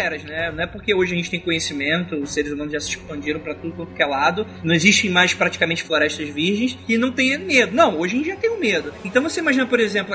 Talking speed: 255 wpm